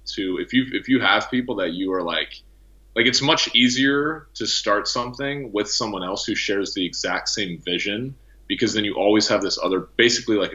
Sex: male